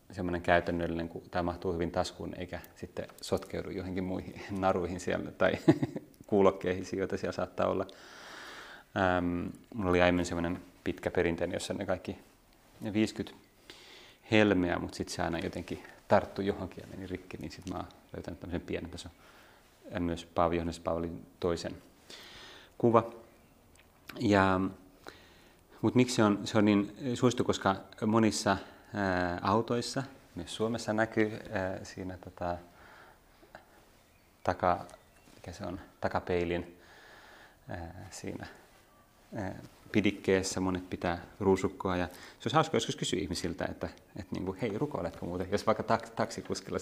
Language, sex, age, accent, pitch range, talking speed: Finnish, male, 30-49, native, 90-105 Hz, 120 wpm